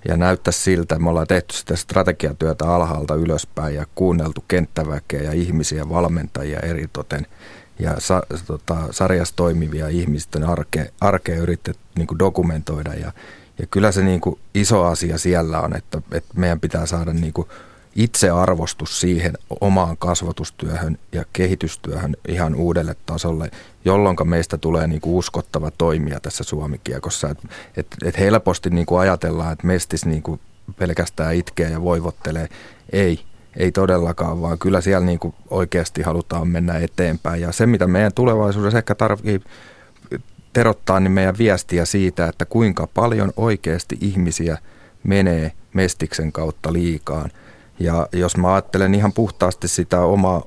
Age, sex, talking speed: 30-49, male, 135 wpm